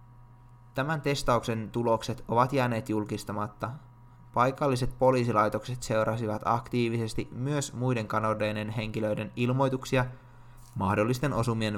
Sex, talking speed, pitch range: male, 85 wpm, 105-120 Hz